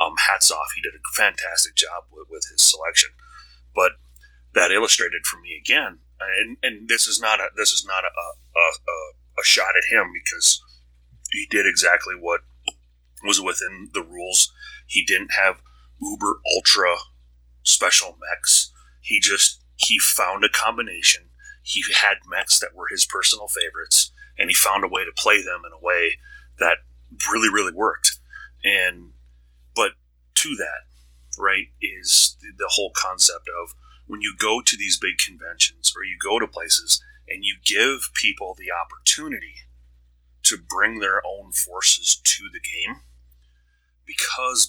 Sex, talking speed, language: male, 155 wpm, English